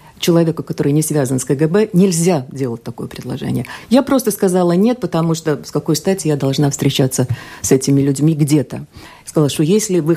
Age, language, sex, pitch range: 50-69, Russian, female, 145-195 Hz